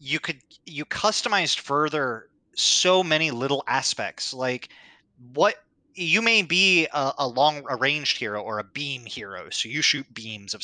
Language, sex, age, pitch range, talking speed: English, male, 20-39, 115-150 Hz, 160 wpm